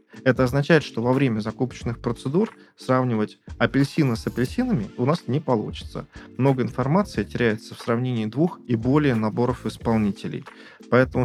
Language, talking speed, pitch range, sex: Russian, 140 wpm, 110-130 Hz, male